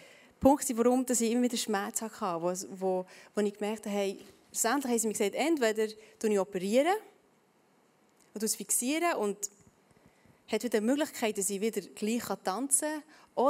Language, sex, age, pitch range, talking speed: German, female, 20-39, 210-265 Hz, 170 wpm